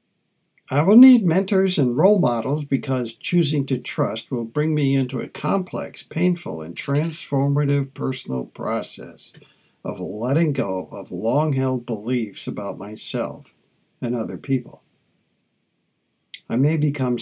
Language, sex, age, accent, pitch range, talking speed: English, male, 60-79, American, 120-150 Hz, 125 wpm